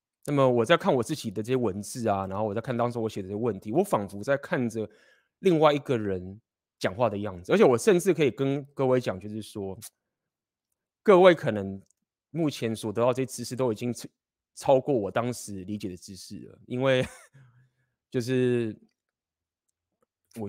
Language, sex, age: Chinese, male, 20-39